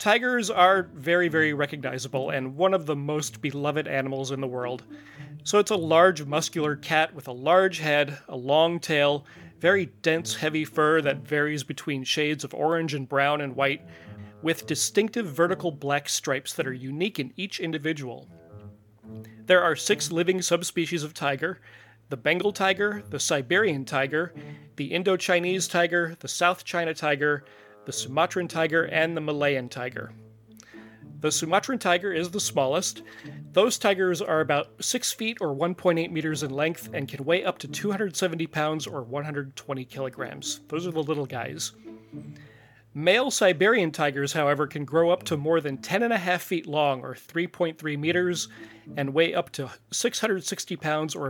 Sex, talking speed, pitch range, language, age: male, 160 wpm, 135-170 Hz, English, 30-49